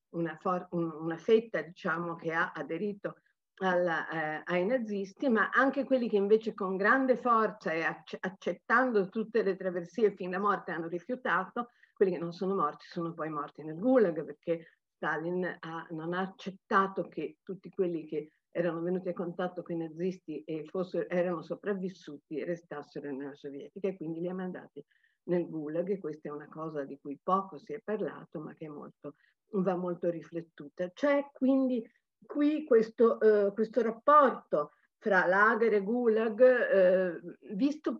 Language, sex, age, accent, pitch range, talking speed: Italian, female, 50-69, native, 170-220 Hz, 155 wpm